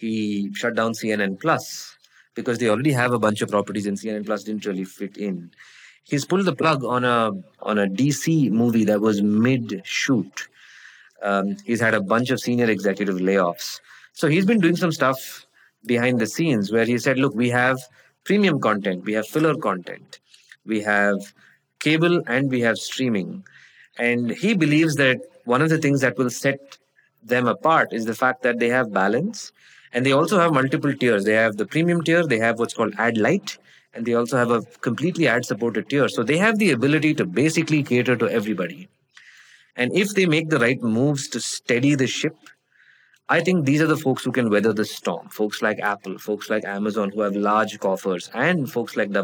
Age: 20-39